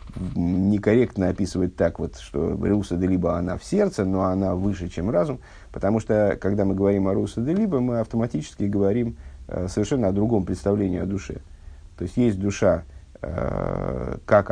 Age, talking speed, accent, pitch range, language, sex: 50-69, 160 wpm, native, 85-115 Hz, Russian, male